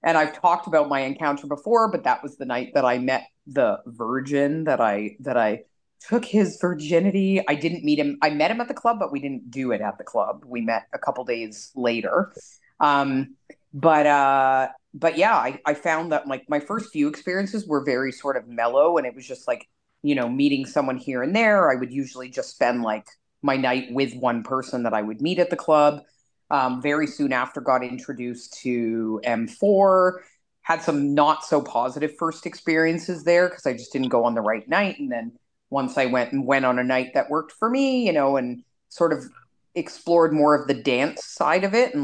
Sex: female